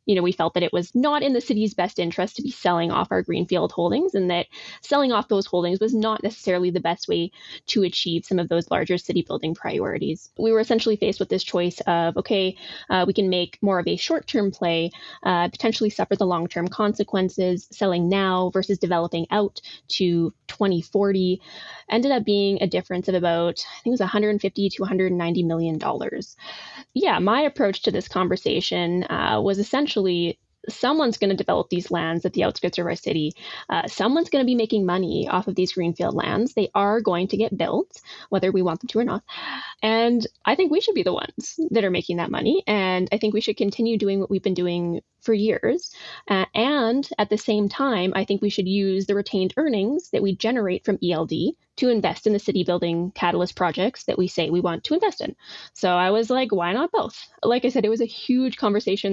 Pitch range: 180-220 Hz